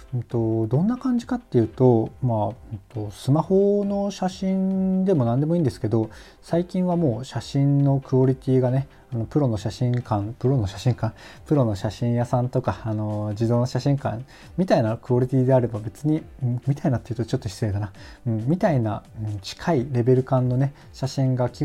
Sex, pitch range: male, 115-140 Hz